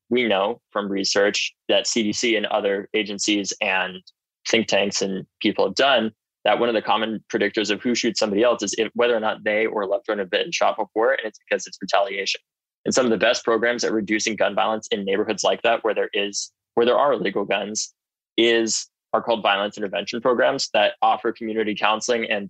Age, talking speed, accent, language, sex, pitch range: 20-39, 210 wpm, American, English, male, 100-115 Hz